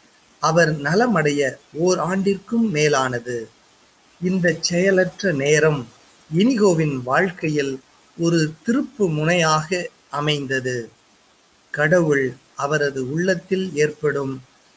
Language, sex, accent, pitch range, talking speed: Tamil, male, native, 140-185 Hz, 70 wpm